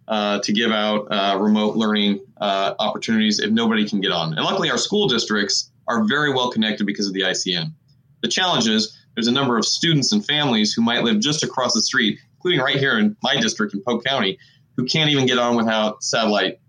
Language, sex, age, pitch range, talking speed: English, male, 30-49, 105-150 Hz, 215 wpm